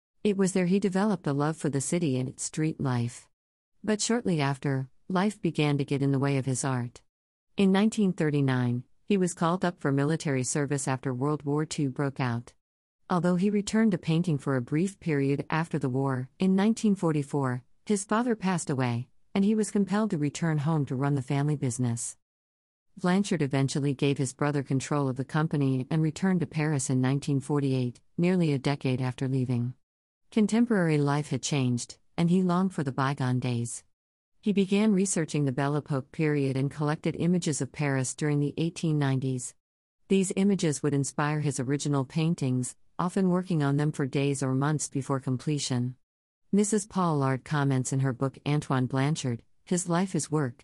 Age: 50-69